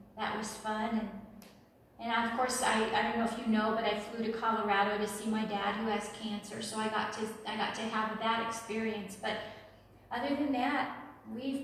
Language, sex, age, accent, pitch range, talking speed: English, female, 40-59, American, 215-260 Hz, 200 wpm